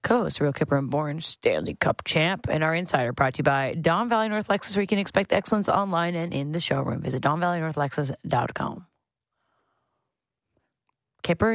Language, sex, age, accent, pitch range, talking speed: English, female, 30-49, American, 150-195 Hz, 165 wpm